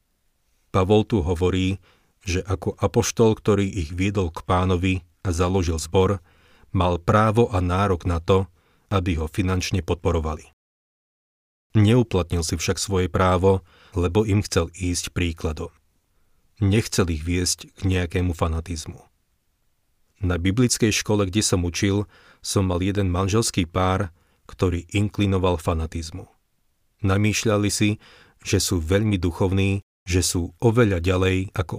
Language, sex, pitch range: Slovak, male, 85-100 Hz